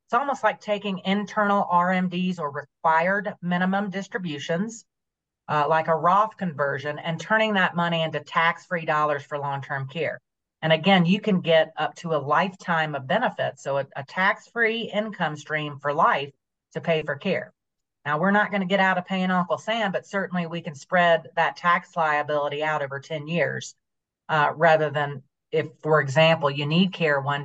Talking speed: 175 wpm